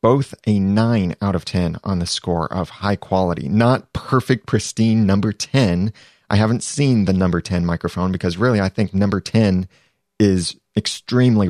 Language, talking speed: English, 165 wpm